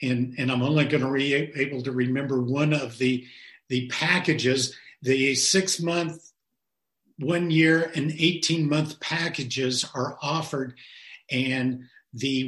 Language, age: English, 50-69